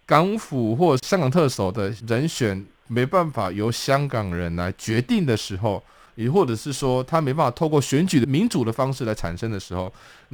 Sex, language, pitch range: male, Chinese, 105-155 Hz